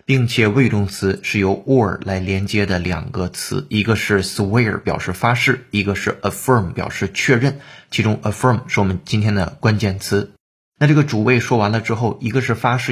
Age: 20-39